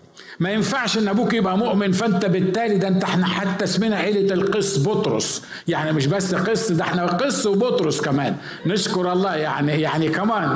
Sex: male